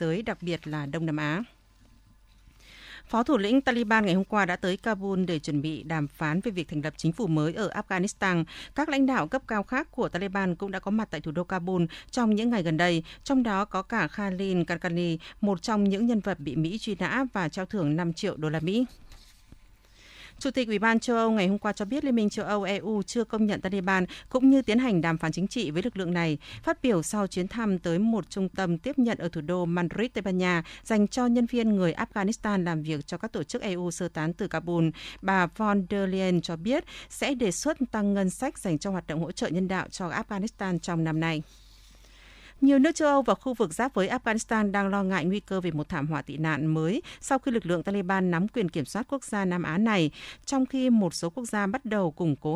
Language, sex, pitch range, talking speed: Vietnamese, female, 170-225 Hz, 240 wpm